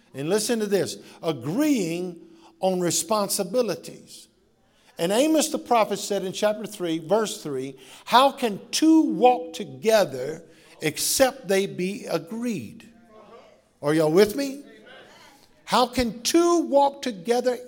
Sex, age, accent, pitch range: male, 50-69, American, 195-250 Hz